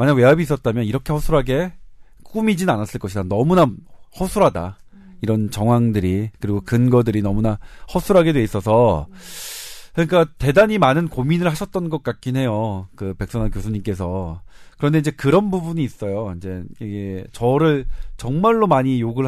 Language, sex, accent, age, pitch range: Korean, male, native, 40-59, 110-170 Hz